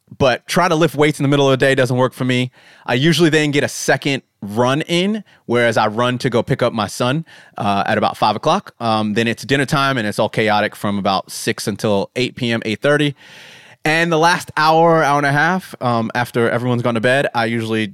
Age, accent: 30-49, American